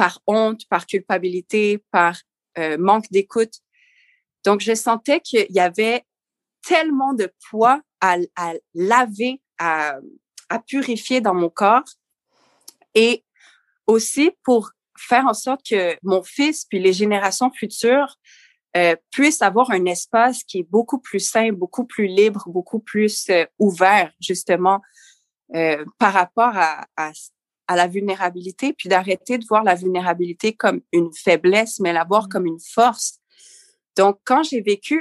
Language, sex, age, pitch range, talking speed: French, female, 30-49, 185-245 Hz, 140 wpm